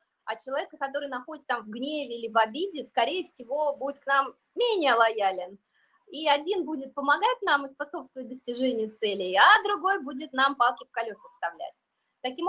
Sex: female